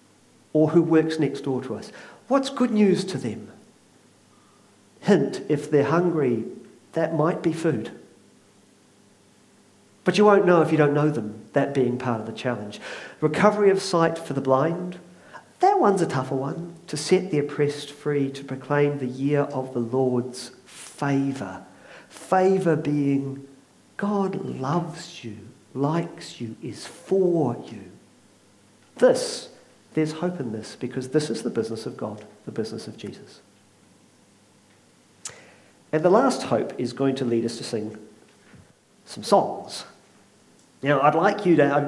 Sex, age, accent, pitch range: male, 50-69, British, 125-165 Hz